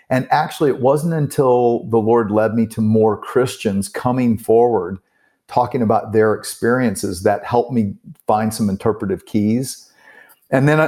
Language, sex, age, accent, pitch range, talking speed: English, male, 50-69, American, 110-135 Hz, 150 wpm